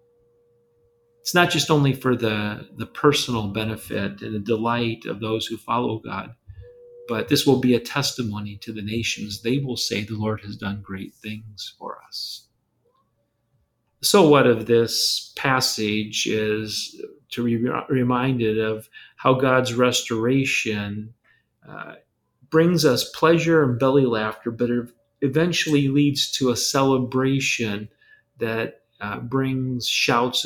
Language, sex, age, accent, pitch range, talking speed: English, male, 40-59, American, 115-145 Hz, 130 wpm